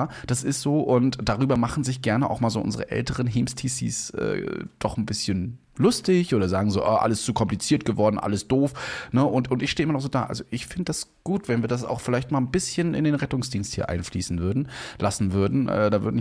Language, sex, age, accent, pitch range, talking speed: German, male, 30-49, German, 100-130 Hz, 230 wpm